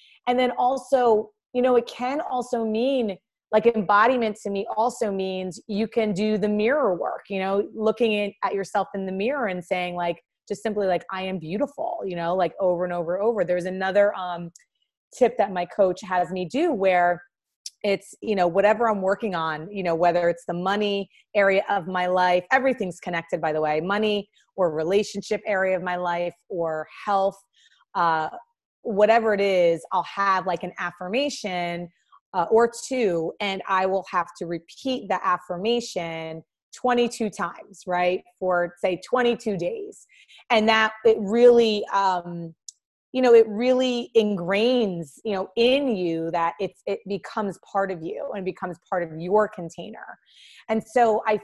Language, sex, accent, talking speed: English, female, American, 170 wpm